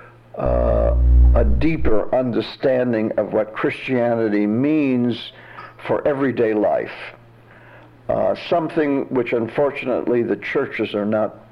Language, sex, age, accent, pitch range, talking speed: English, male, 60-79, American, 110-130 Hz, 100 wpm